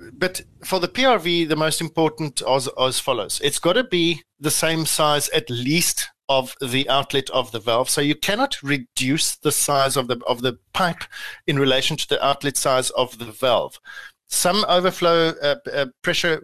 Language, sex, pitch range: English, male, 135-165 Hz